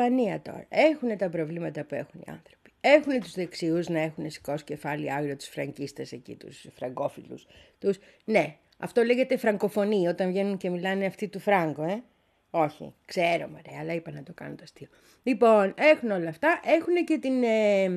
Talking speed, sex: 170 wpm, female